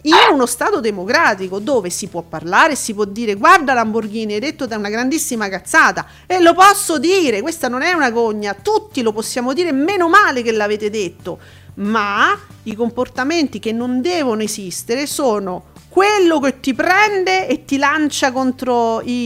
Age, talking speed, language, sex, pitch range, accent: 40-59, 170 wpm, Italian, female, 225-340 Hz, native